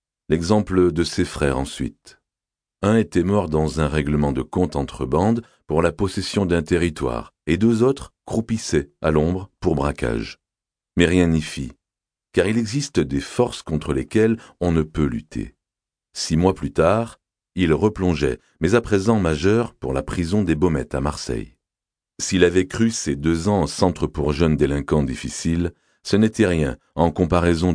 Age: 40-59